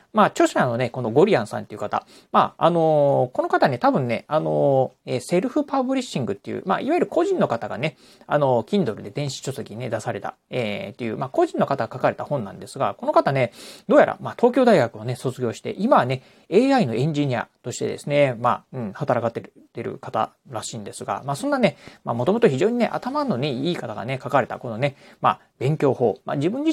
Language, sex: Japanese, male